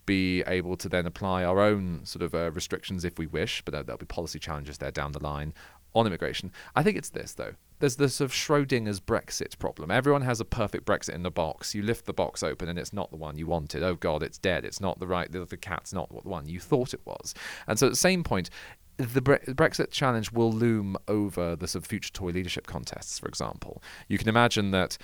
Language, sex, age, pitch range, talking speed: English, male, 40-59, 85-115 Hz, 240 wpm